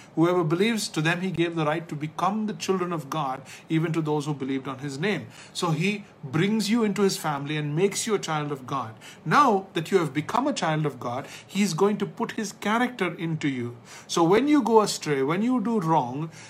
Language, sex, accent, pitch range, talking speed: English, male, Indian, 150-200 Hz, 230 wpm